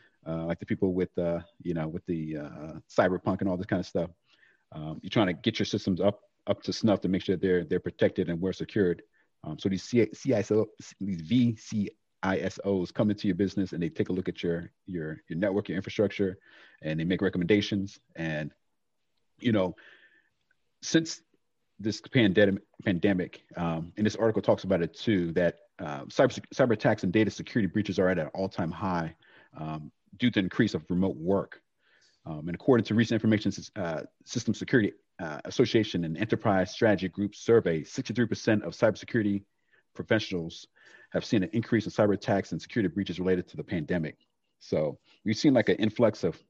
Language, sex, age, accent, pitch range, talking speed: English, male, 40-59, American, 90-110 Hz, 185 wpm